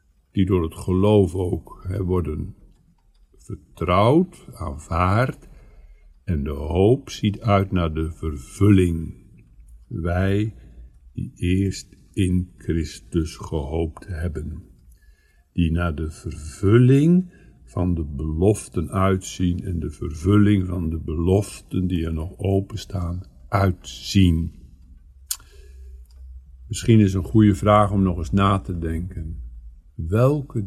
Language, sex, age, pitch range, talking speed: Dutch, male, 60-79, 75-100 Hz, 110 wpm